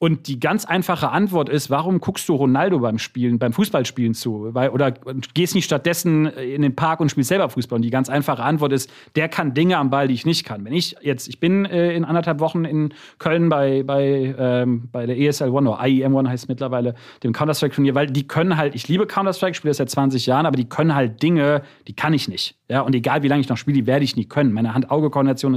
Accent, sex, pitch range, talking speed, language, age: German, male, 130-165 Hz, 250 wpm, German, 40-59